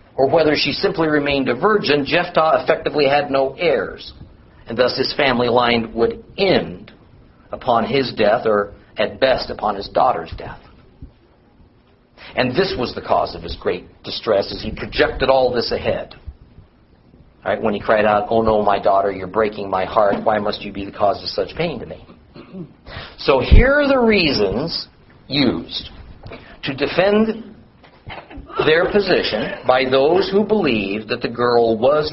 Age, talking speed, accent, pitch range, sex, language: 50-69, 165 wpm, American, 115-160 Hz, male, English